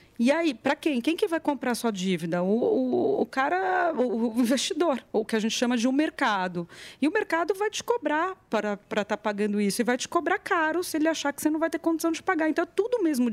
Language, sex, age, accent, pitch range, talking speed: Portuguese, female, 30-49, Brazilian, 205-325 Hz, 260 wpm